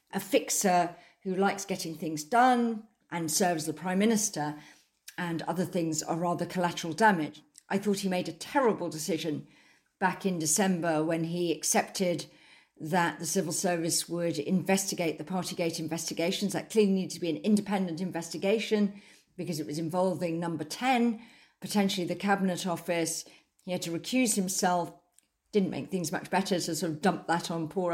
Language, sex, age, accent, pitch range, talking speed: English, female, 50-69, British, 160-195 Hz, 170 wpm